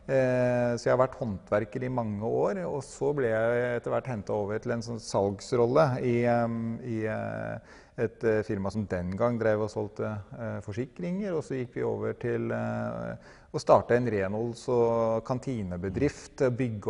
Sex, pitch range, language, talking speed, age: male, 110-130 Hz, English, 155 wpm, 30-49